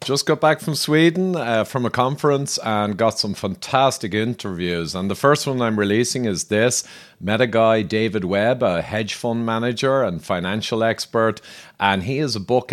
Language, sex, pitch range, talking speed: English, male, 100-135 Hz, 185 wpm